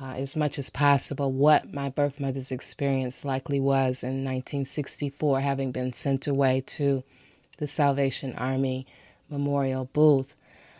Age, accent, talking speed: 30-49, American, 135 wpm